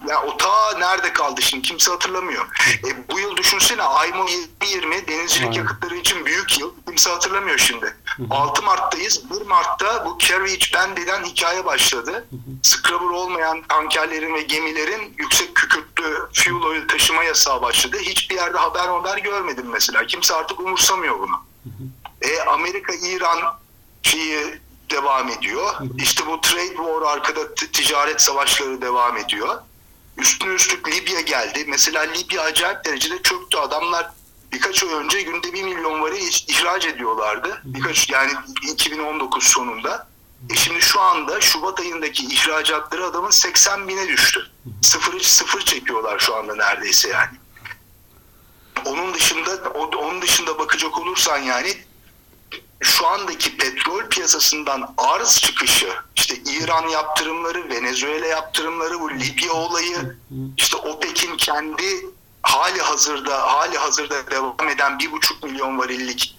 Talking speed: 130 wpm